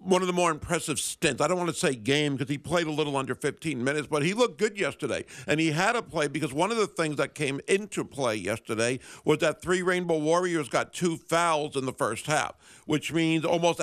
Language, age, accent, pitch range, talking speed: English, 60-79, American, 145-180 Hz, 240 wpm